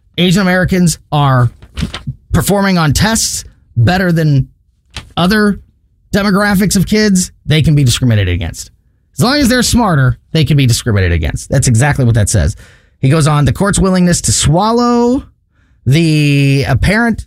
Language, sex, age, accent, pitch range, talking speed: English, male, 30-49, American, 115-175 Hz, 145 wpm